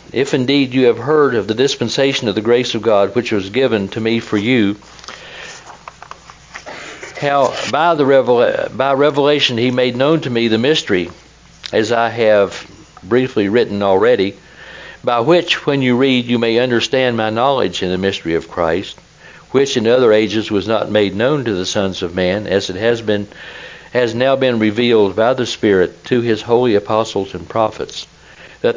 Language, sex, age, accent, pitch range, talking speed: English, male, 60-79, American, 105-130 Hz, 170 wpm